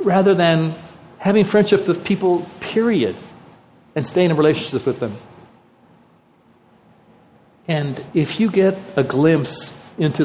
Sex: male